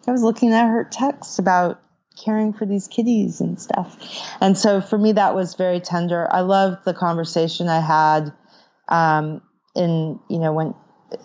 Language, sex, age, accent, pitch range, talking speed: English, female, 30-49, American, 150-180 Hz, 165 wpm